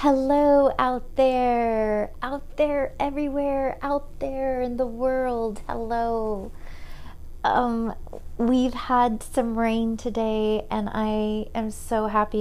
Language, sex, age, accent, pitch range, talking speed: English, female, 30-49, American, 190-230 Hz, 110 wpm